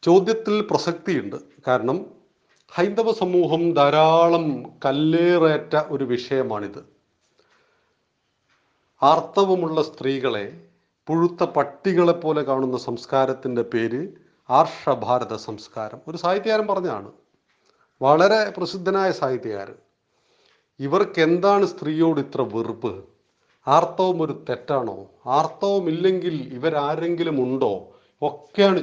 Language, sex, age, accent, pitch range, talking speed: Malayalam, male, 40-59, native, 130-180 Hz, 75 wpm